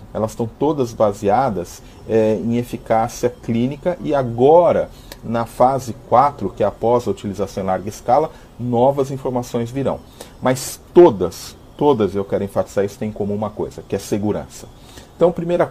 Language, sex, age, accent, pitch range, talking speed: Portuguese, male, 40-59, Brazilian, 105-125 Hz, 155 wpm